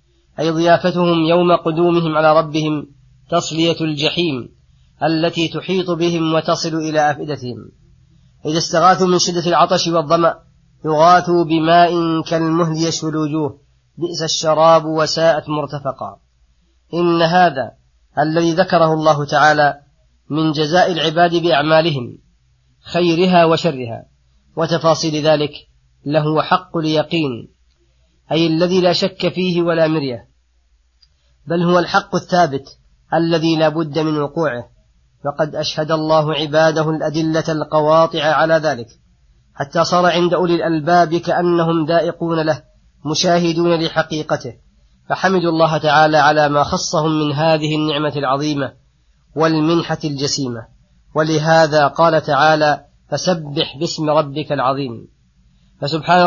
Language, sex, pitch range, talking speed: Arabic, female, 145-170 Hz, 105 wpm